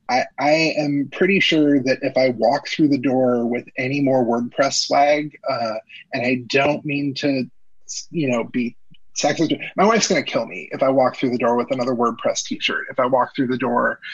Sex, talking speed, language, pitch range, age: male, 210 wpm, English, 130-160 Hz, 30-49